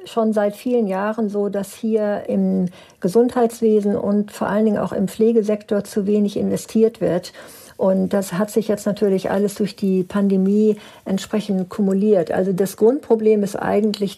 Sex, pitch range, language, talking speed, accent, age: female, 190-215 Hz, German, 155 wpm, German, 60-79